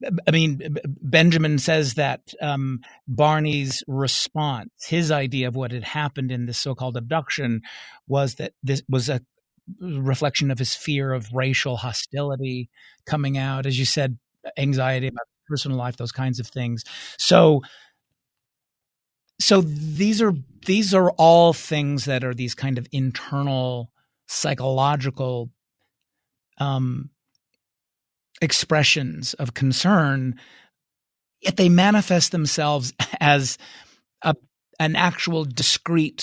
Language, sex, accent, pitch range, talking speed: English, male, American, 130-165 Hz, 115 wpm